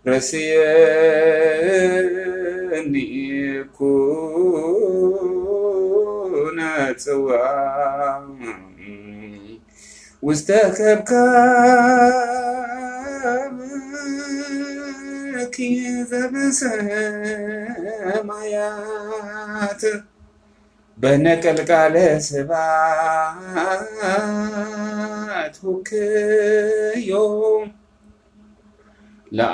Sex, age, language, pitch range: male, 30-49, Amharic, 160-215 Hz